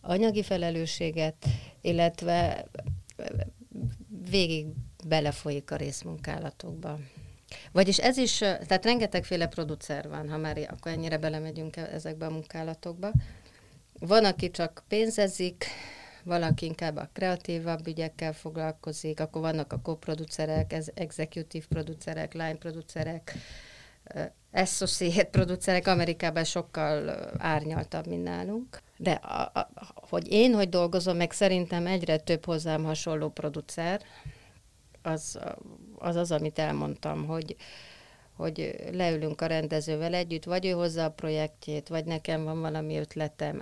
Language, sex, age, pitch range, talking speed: Hungarian, female, 30-49, 155-175 Hz, 110 wpm